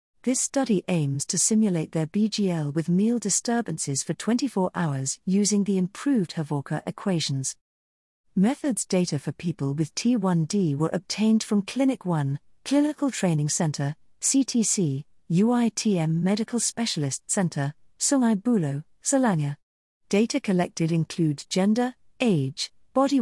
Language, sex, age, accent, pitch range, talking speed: English, female, 50-69, British, 160-220 Hz, 120 wpm